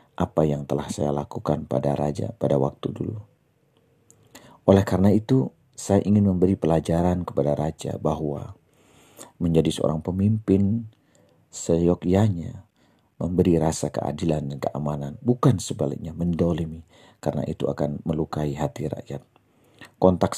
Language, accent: English, Indonesian